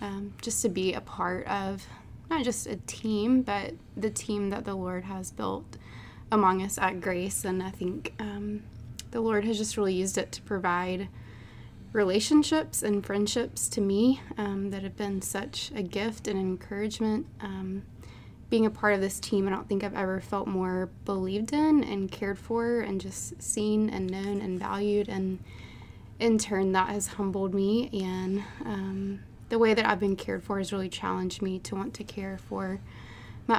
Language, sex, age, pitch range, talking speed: English, female, 20-39, 185-210 Hz, 180 wpm